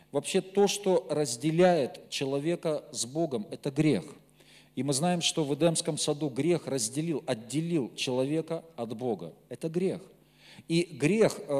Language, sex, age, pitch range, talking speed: Russian, male, 40-59, 145-175 Hz, 135 wpm